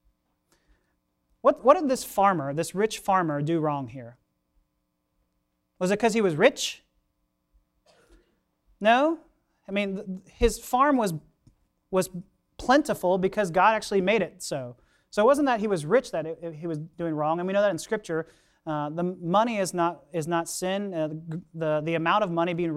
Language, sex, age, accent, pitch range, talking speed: English, male, 30-49, American, 160-205 Hz, 180 wpm